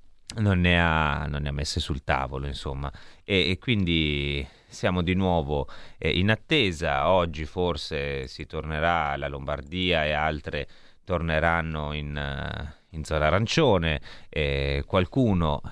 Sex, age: male, 30-49